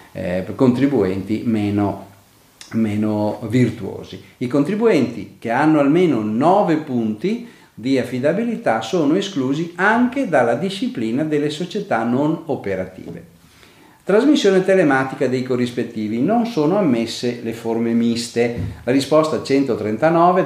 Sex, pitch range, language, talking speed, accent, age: male, 115-160 Hz, Italian, 105 wpm, native, 40-59